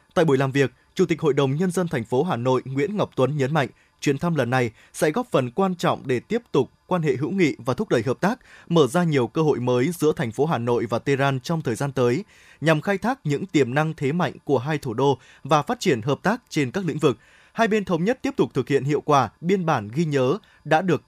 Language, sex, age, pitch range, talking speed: Vietnamese, male, 20-39, 135-185 Hz, 270 wpm